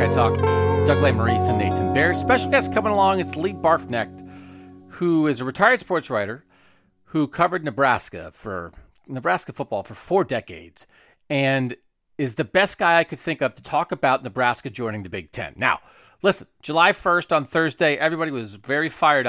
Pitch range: 115-170 Hz